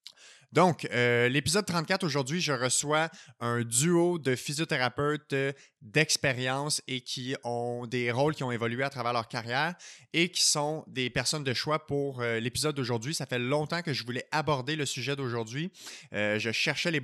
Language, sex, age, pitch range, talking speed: French, male, 20-39, 120-150 Hz, 170 wpm